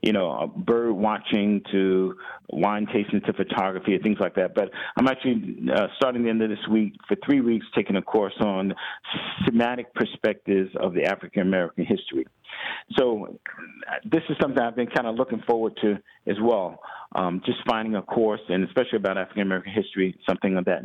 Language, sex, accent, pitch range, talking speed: English, male, American, 100-120 Hz, 180 wpm